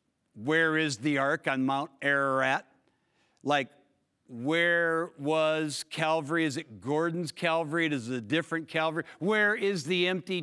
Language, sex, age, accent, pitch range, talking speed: English, male, 50-69, American, 140-175 Hz, 140 wpm